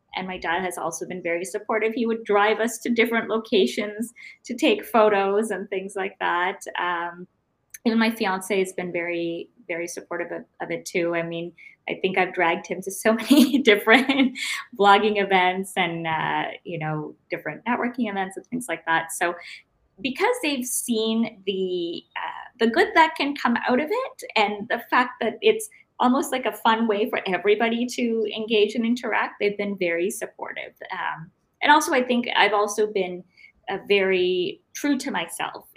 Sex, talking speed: female, 175 wpm